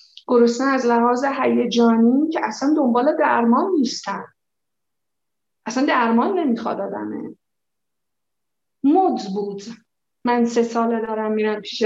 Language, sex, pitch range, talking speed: Persian, female, 230-275 Hz, 100 wpm